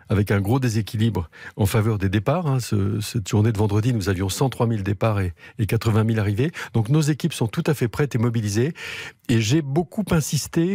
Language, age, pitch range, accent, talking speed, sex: French, 50-69, 110-150 Hz, French, 195 wpm, male